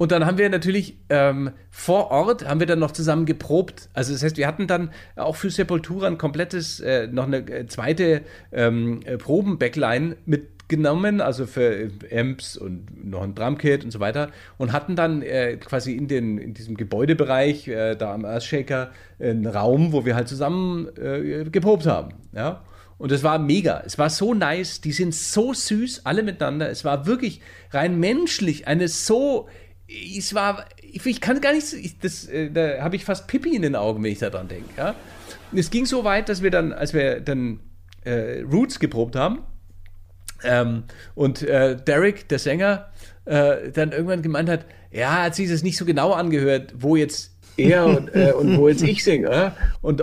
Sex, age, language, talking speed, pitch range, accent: male, 40-59, German, 185 wpm, 120-185 Hz, German